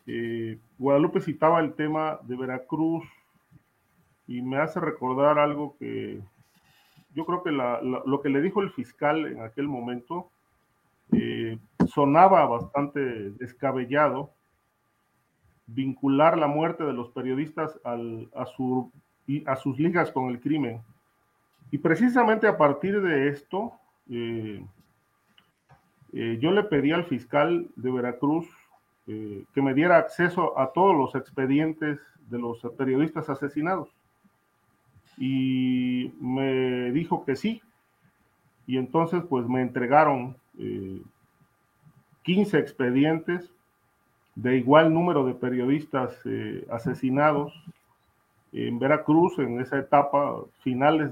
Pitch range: 125-155 Hz